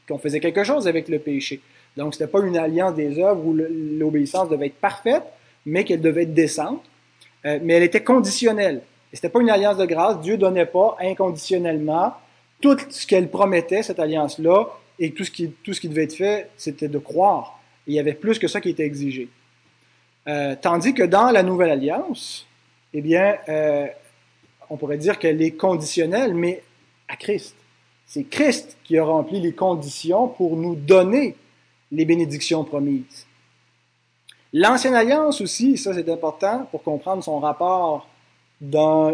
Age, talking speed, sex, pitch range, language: 30-49, 175 wpm, male, 150-200 Hz, French